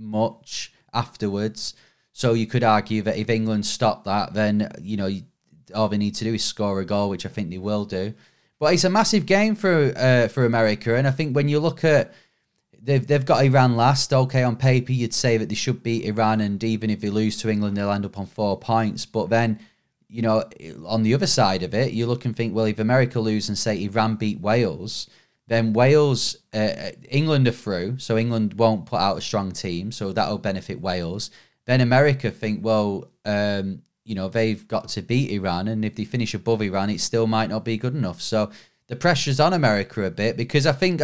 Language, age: English, 20-39